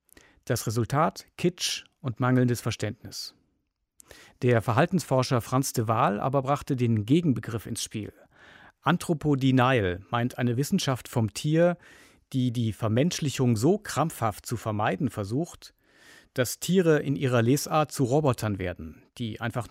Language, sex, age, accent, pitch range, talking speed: German, male, 50-69, German, 115-145 Hz, 125 wpm